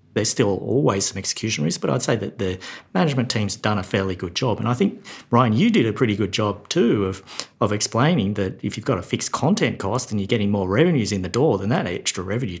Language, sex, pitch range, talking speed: English, male, 95-120 Hz, 245 wpm